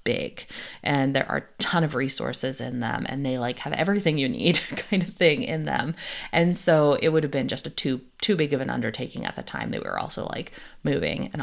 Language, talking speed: English, 240 wpm